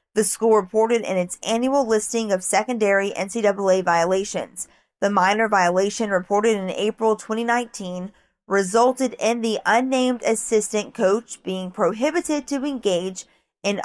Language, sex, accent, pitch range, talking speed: English, female, American, 190-230 Hz, 125 wpm